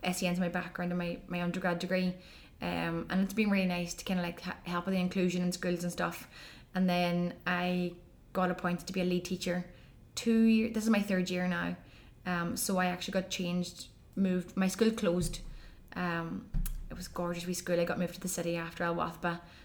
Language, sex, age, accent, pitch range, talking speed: English, female, 20-39, Irish, 170-185 Hz, 210 wpm